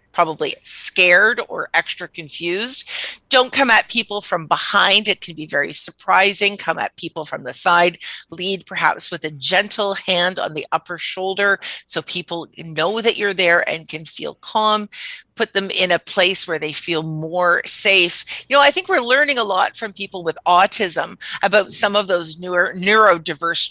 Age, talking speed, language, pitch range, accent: 40-59, 175 wpm, English, 170-220 Hz, American